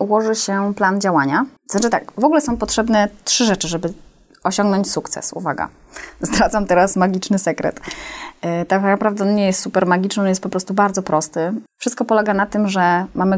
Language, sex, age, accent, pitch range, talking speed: Polish, female, 20-39, native, 185-220 Hz, 175 wpm